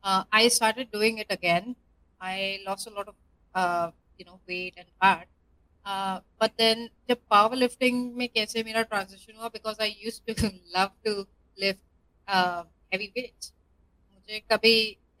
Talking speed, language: 155 wpm, Hindi